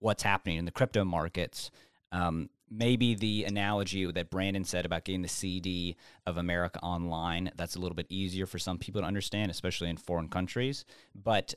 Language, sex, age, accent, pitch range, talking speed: English, male, 30-49, American, 90-105 Hz, 180 wpm